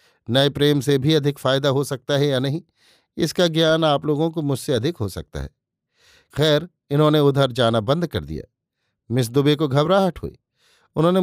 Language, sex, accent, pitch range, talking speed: Hindi, male, native, 130-155 Hz, 180 wpm